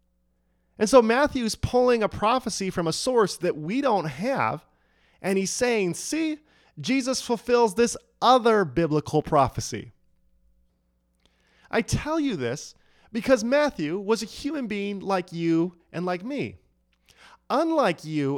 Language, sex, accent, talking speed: English, male, American, 130 wpm